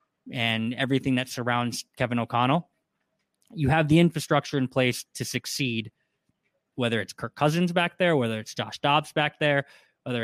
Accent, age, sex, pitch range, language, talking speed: American, 20-39, male, 120-155 Hz, English, 160 wpm